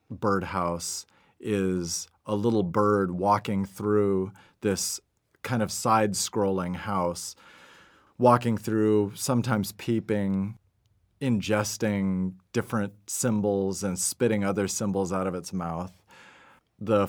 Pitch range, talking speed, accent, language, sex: 95-110 Hz, 100 wpm, American, English, male